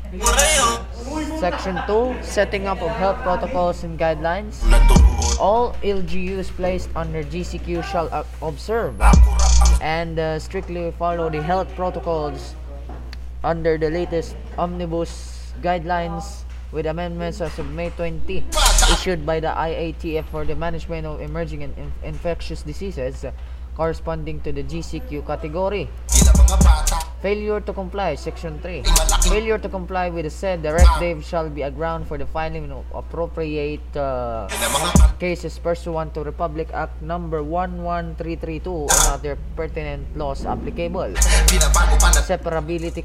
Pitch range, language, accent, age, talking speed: 145-175 Hz, Filipino, native, 20-39, 125 wpm